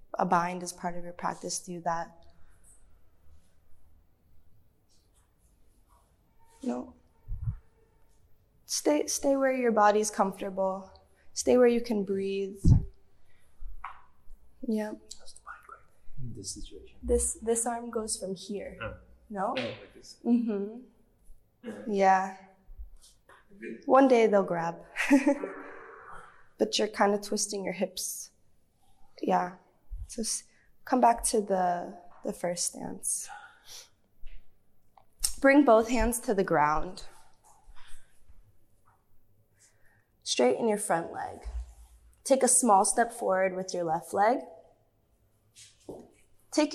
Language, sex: Hebrew, female